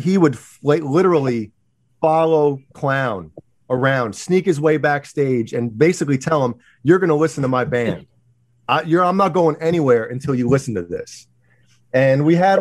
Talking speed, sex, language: 160 wpm, male, English